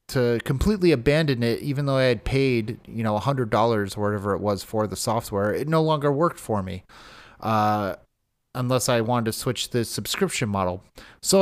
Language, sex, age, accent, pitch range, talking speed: English, male, 30-49, American, 105-145 Hz, 195 wpm